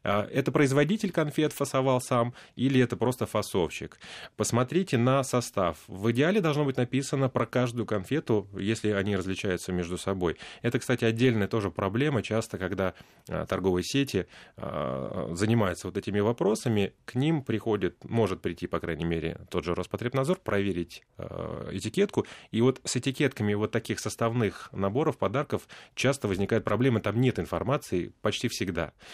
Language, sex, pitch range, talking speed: Russian, male, 95-130 Hz, 140 wpm